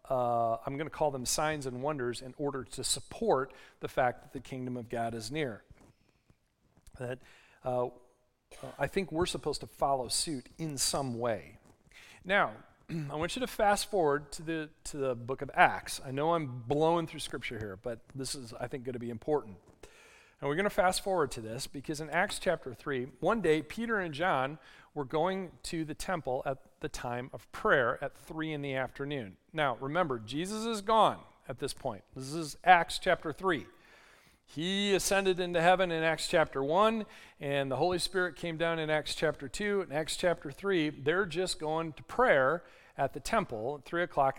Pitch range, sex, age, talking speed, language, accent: 130-180 Hz, male, 40-59, 190 wpm, English, American